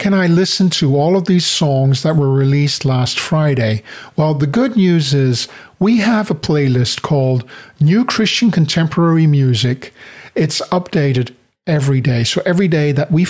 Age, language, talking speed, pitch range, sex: 50-69, English, 165 wpm, 135-165 Hz, male